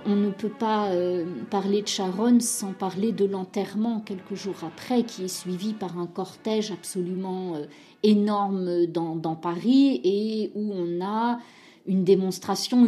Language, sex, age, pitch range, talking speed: French, female, 40-59, 185-245 Hz, 145 wpm